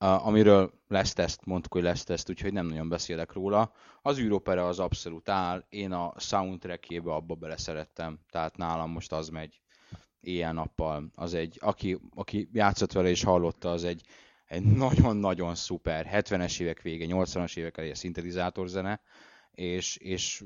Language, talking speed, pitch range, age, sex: Hungarian, 155 wpm, 85-110 Hz, 20-39, male